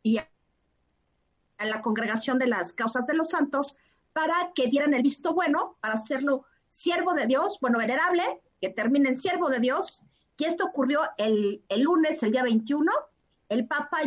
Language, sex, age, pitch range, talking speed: Spanish, female, 50-69, 230-315 Hz, 165 wpm